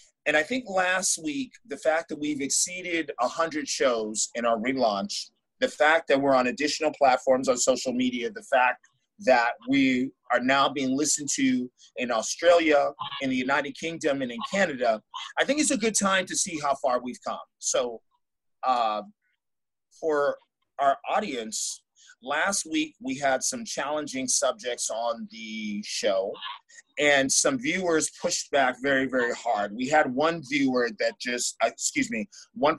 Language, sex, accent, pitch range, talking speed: English, male, American, 135-220 Hz, 160 wpm